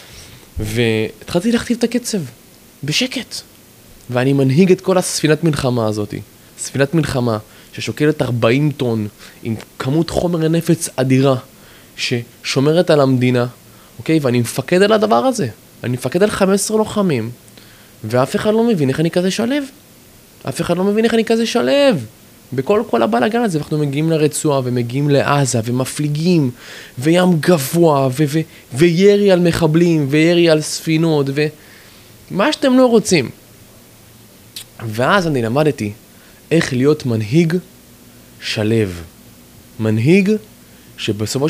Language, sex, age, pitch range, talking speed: Hebrew, male, 20-39, 115-170 Hz, 125 wpm